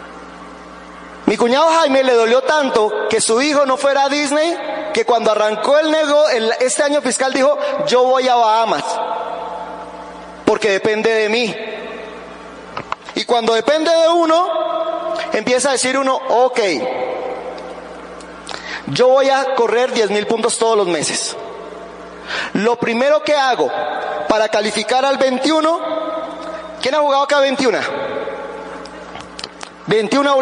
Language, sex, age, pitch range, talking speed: Spanish, male, 30-49, 230-295 Hz, 125 wpm